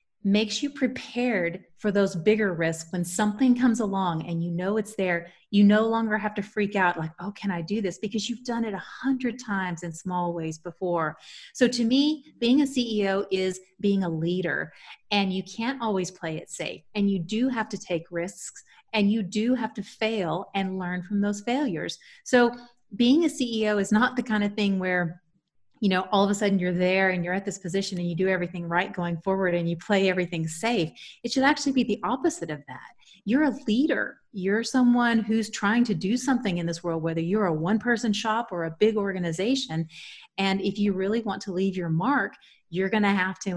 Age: 30-49